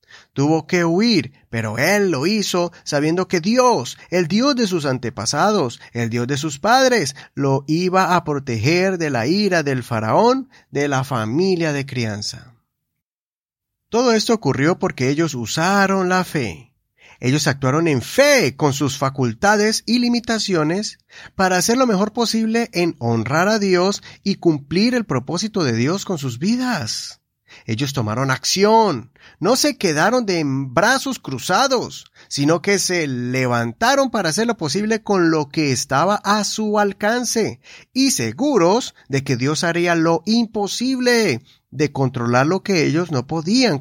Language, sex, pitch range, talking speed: Spanish, male, 140-210 Hz, 150 wpm